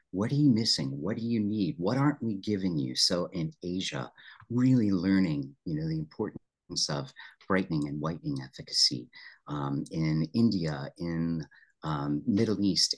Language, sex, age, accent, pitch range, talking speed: English, male, 40-59, American, 85-115 Hz, 155 wpm